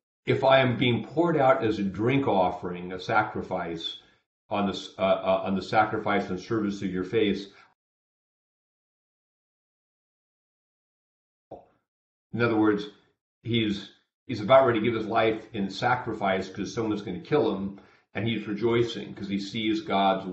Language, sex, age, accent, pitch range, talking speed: English, male, 40-59, American, 95-110 Hz, 145 wpm